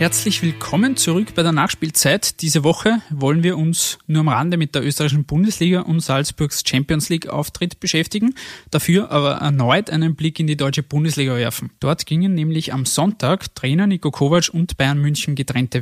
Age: 20-39